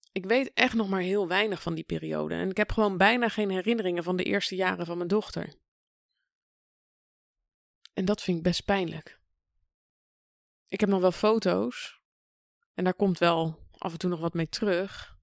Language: Dutch